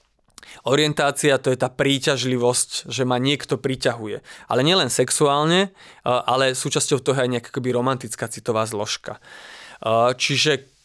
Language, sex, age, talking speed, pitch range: Slovak, male, 20-39, 120 wpm, 120-145 Hz